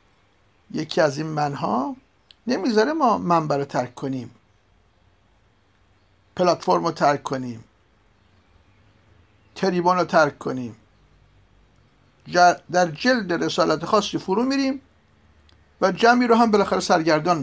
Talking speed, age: 105 wpm, 50-69